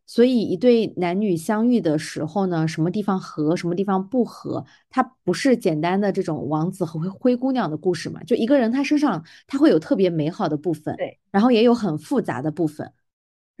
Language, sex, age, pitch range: Chinese, female, 20-39, 165-235 Hz